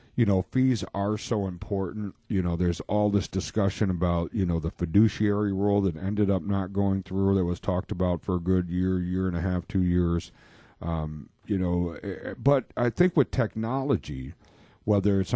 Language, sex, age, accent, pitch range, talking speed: English, male, 50-69, American, 90-105 Hz, 190 wpm